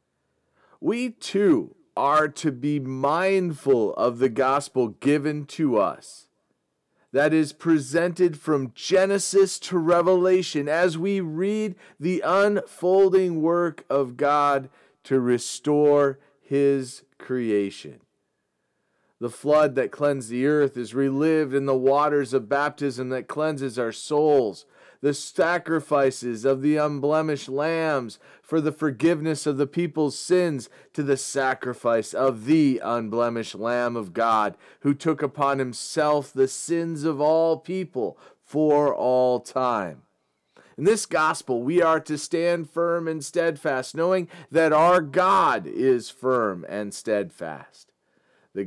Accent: American